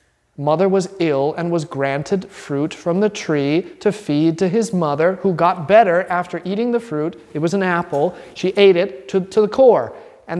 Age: 30-49